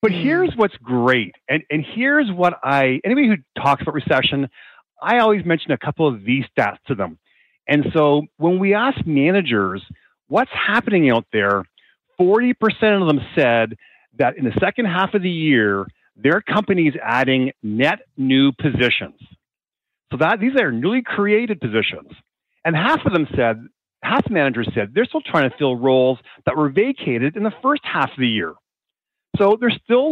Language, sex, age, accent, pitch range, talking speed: English, male, 40-59, American, 130-210 Hz, 175 wpm